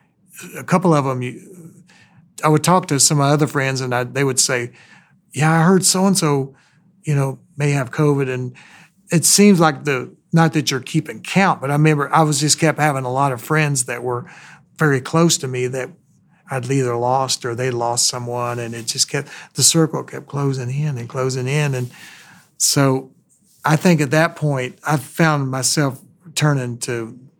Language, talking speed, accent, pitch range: English, 195 wpm, American, 125-150 Hz